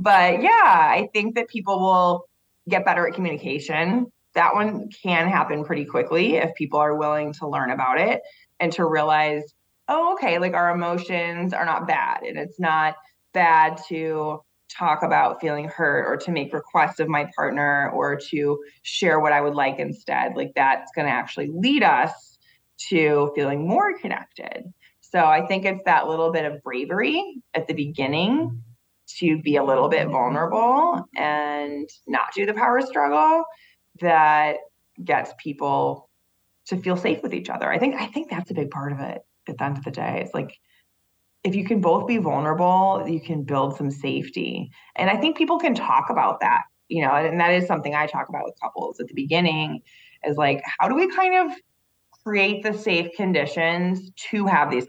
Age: 20-39